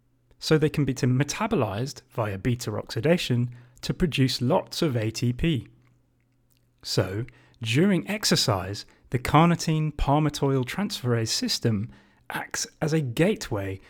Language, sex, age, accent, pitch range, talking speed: English, male, 30-49, British, 115-145 Hz, 100 wpm